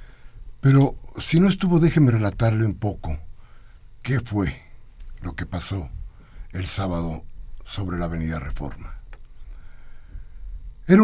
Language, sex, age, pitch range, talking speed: Spanish, male, 60-79, 90-135 Hz, 110 wpm